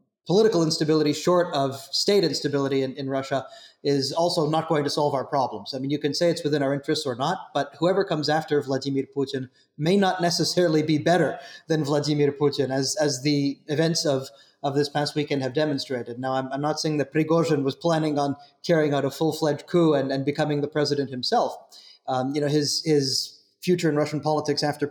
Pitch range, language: 135-155 Hz, English